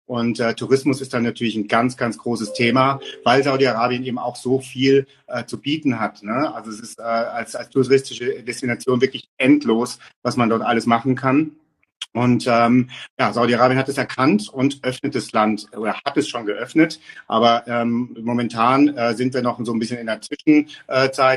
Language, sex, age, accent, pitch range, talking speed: German, male, 40-59, German, 110-130 Hz, 185 wpm